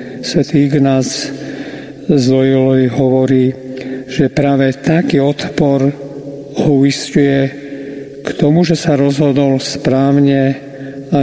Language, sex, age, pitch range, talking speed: Slovak, male, 50-69, 135-150 Hz, 85 wpm